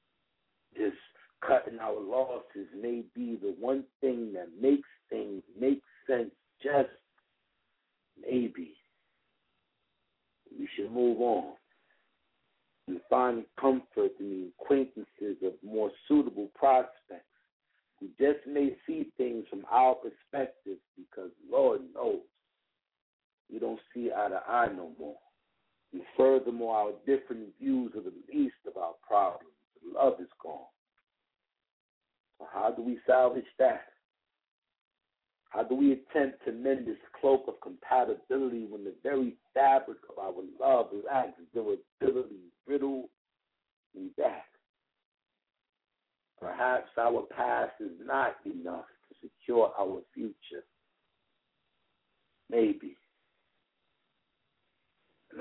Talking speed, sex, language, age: 115 wpm, male, English, 60-79